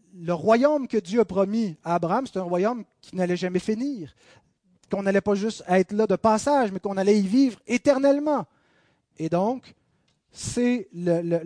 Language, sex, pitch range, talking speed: French, male, 170-230 Hz, 180 wpm